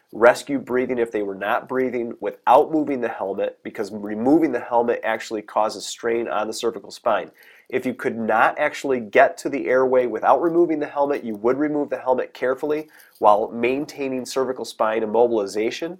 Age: 30-49